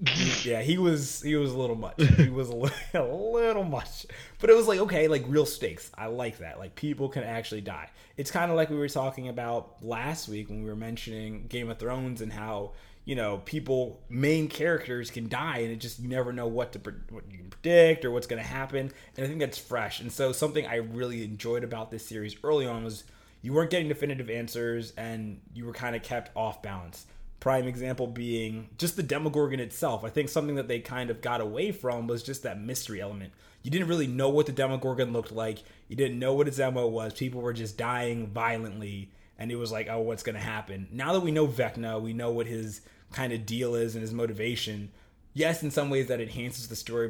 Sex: male